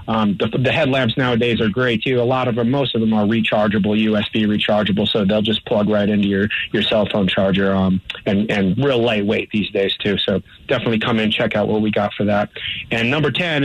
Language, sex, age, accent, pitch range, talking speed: English, male, 30-49, American, 100-110 Hz, 230 wpm